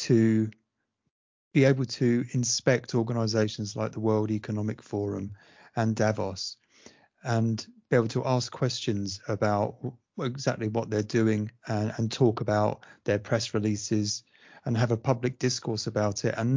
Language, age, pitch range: English, 30-49, 105-125 Hz